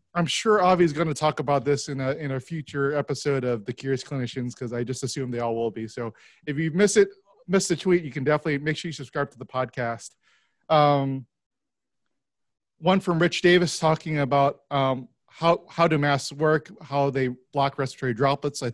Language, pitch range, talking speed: English, 125-150 Hz, 205 wpm